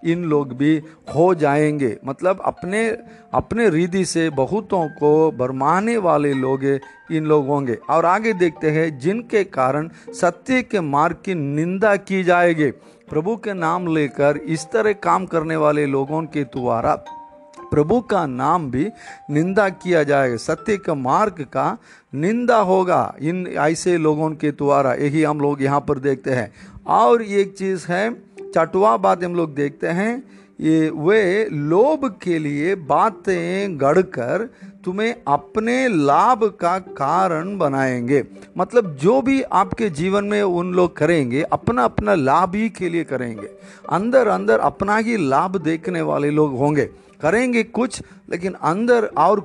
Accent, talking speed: native, 150 wpm